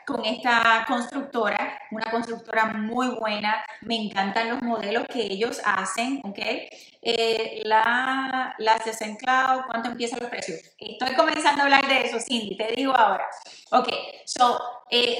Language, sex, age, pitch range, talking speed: Spanish, female, 30-49, 225-275 Hz, 150 wpm